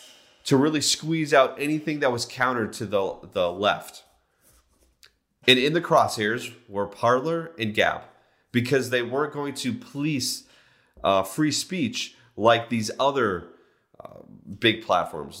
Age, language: 30-49, English